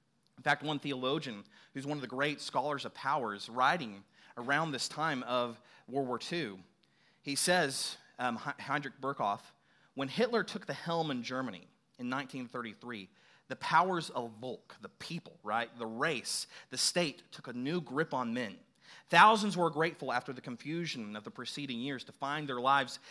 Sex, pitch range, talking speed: male, 120-160 Hz, 170 wpm